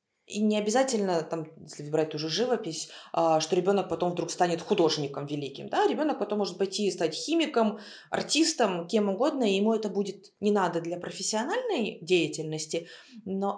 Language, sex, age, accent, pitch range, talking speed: Russian, female, 20-39, native, 165-200 Hz, 160 wpm